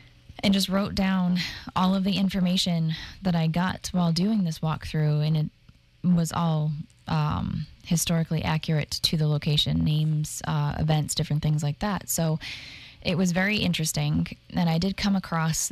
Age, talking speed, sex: 10-29, 160 wpm, female